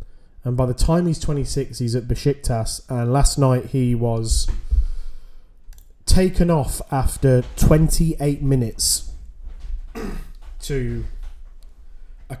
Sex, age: male, 20-39